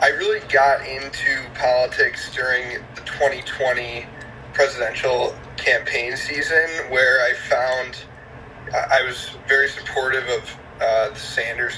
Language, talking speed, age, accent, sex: English, 110 wpm, 30-49, American, male